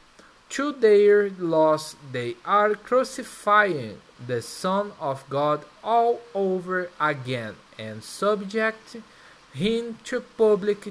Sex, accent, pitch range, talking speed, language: male, Brazilian, 140-225 Hz, 100 wpm, Portuguese